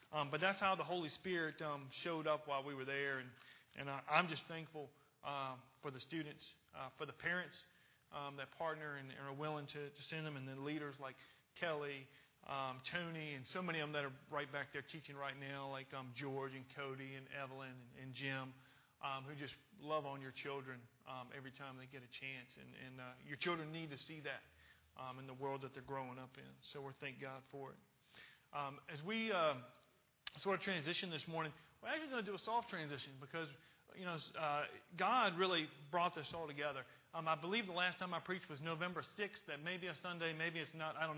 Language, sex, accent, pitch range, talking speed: English, male, American, 140-165 Hz, 225 wpm